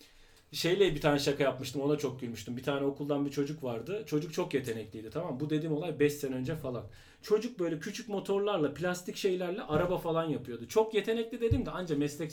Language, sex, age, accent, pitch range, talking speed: Turkish, male, 40-59, native, 130-205 Hz, 200 wpm